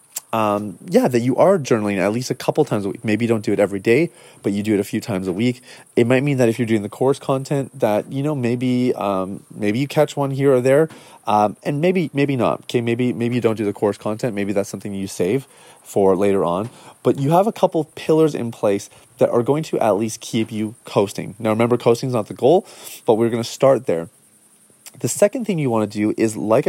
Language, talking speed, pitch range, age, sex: English, 255 wpm, 105-135 Hz, 30-49, male